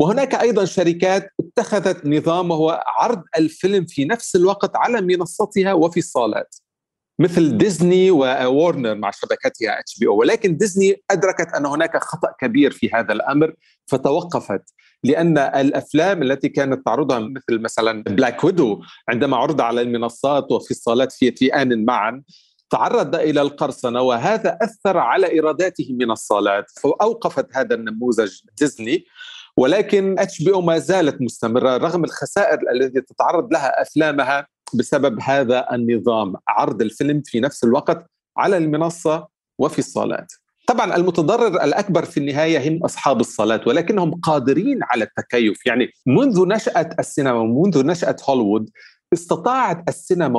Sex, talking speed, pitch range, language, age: male, 130 wpm, 130-195 Hz, Arabic, 40-59